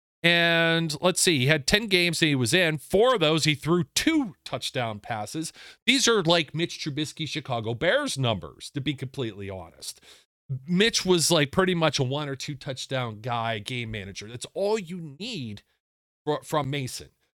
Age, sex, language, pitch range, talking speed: 40-59, male, English, 115-145 Hz, 175 wpm